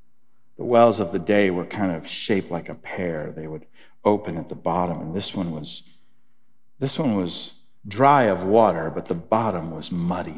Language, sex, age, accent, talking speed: English, male, 50-69, American, 190 wpm